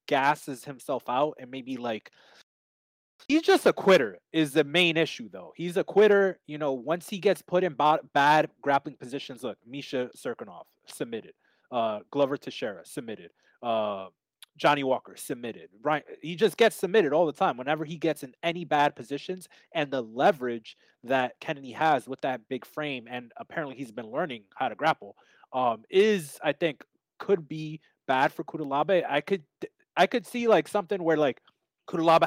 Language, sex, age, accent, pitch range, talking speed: English, male, 20-39, American, 130-165 Hz, 170 wpm